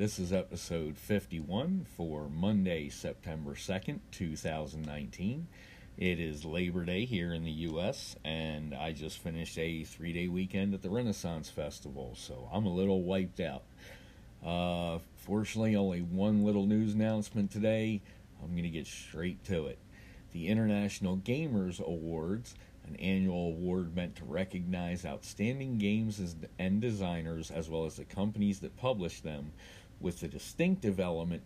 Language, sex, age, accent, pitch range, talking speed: English, male, 50-69, American, 85-100 Hz, 145 wpm